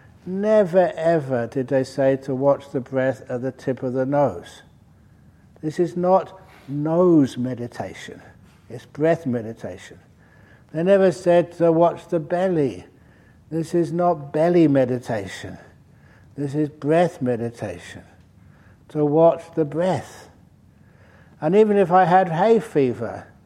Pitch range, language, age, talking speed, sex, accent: 120-170 Hz, English, 60-79, 130 wpm, male, British